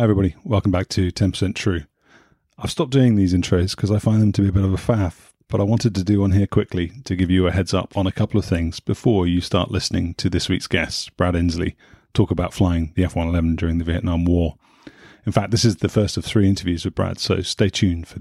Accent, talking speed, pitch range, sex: British, 250 wpm, 90-105 Hz, male